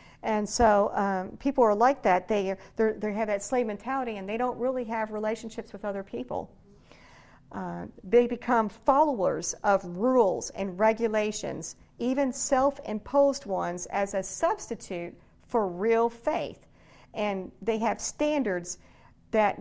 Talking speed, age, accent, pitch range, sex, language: 135 wpm, 50-69, American, 190-235 Hz, female, English